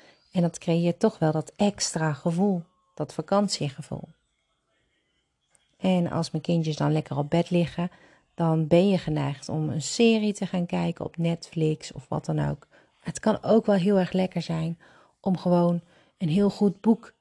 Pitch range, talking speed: 155-185 Hz, 170 wpm